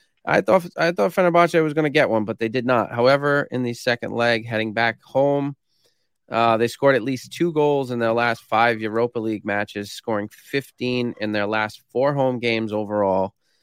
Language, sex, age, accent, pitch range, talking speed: English, male, 20-39, American, 110-125 Hz, 200 wpm